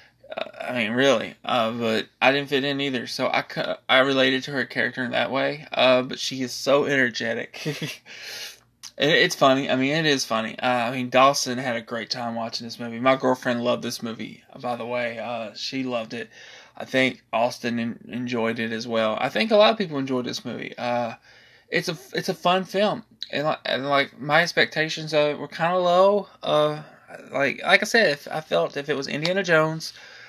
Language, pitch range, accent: English, 120-145 Hz, American